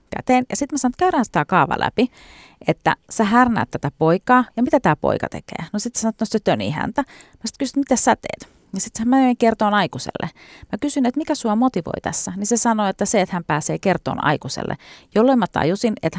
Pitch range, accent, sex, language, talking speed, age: 145-210 Hz, native, female, Finnish, 220 wpm, 40-59